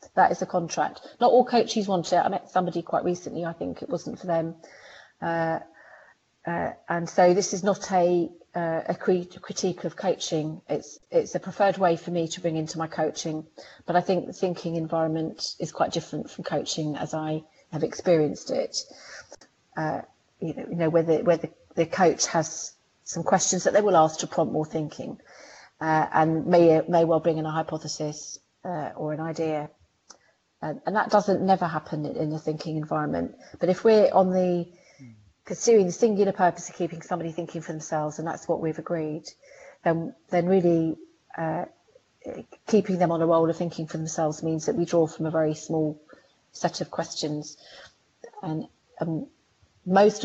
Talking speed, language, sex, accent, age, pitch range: 180 wpm, English, female, British, 30-49, 155-180 Hz